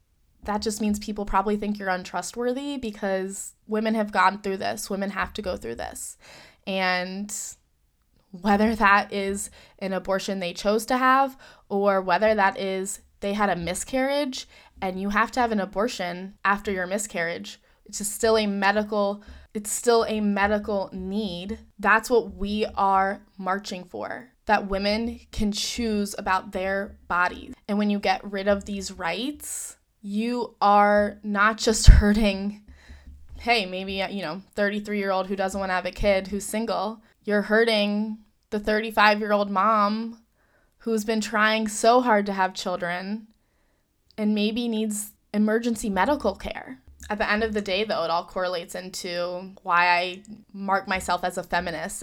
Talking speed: 155 wpm